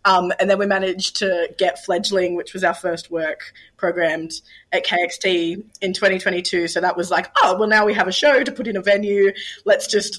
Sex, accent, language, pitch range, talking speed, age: female, Australian, English, 175-205 Hz, 210 wpm, 20-39